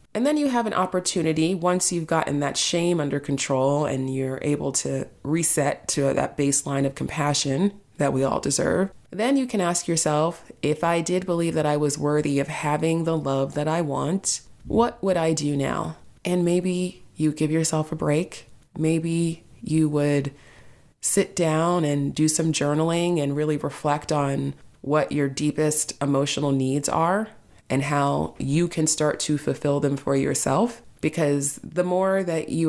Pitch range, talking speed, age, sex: 140-160 Hz, 170 wpm, 30-49, female